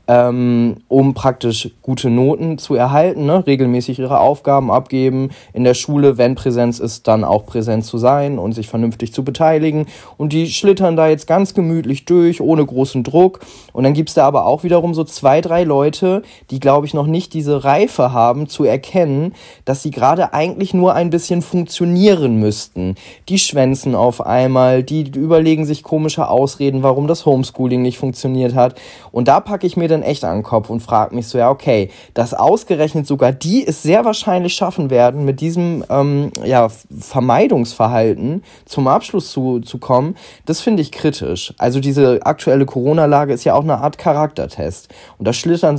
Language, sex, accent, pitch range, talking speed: German, male, German, 125-160 Hz, 175 wpm